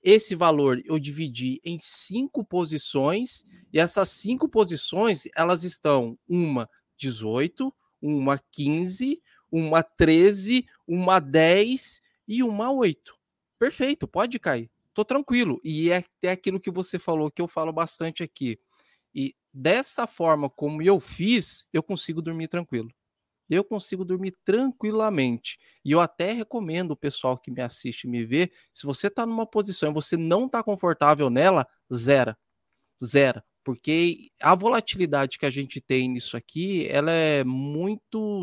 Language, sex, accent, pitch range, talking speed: Portuguese, male, Brazilian, 140-195 Hz, 140 wpm